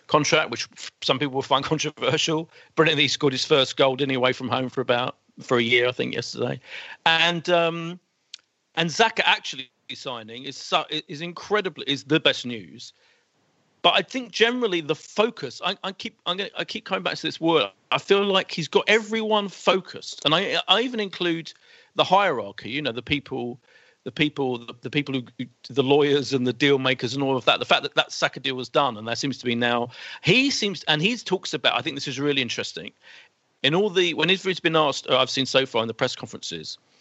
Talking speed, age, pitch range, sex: 210 wpm, 40-59, 125-165 Hz, male